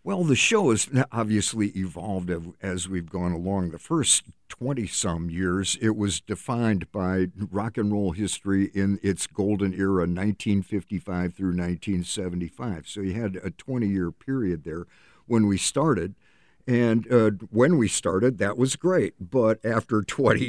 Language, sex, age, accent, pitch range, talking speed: English, male, 50-69, American, 95-120 Hz, 145 wpm